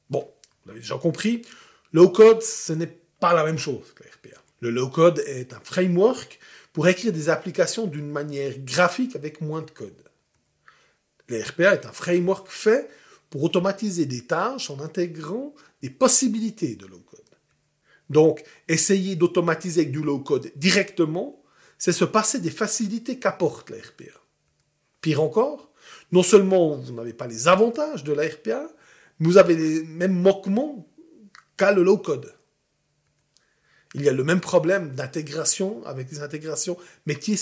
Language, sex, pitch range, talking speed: French, male, 145-195 Hz, 150 wpm